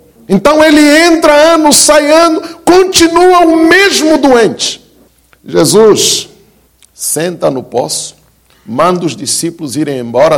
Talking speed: 110 wpm